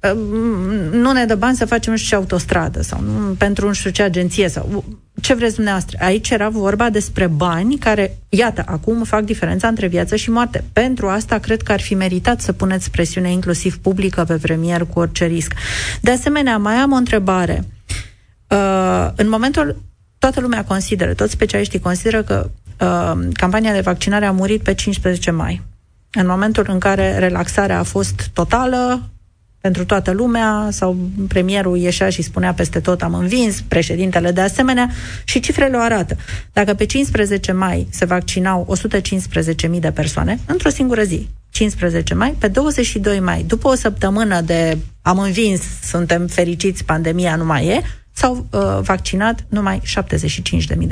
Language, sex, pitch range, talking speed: Romanian, female, 165-220 Hz, 160 wpm